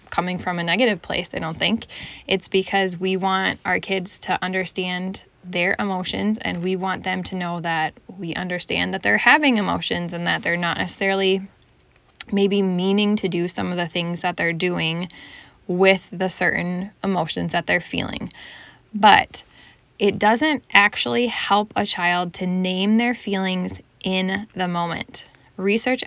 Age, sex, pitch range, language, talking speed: 10-29, female, 180-205 Hz, English, 160 wpm